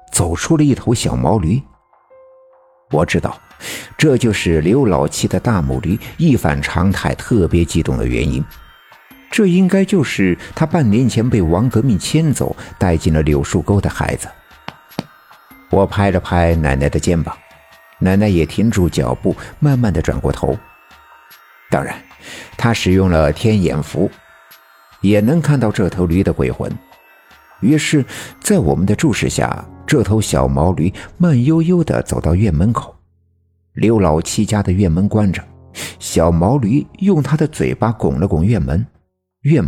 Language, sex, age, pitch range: Chinese, male, 60-79, 85-120 Hz